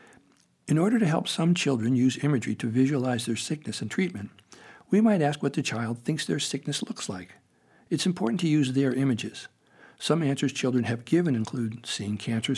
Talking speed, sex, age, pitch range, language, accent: 185 wpm, male, 60-79, 115-140 Hz, English, American